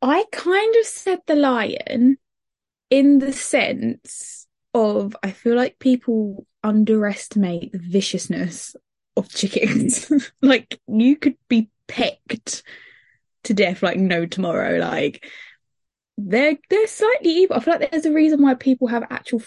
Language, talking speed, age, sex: English, 135 wpm, 10-29, female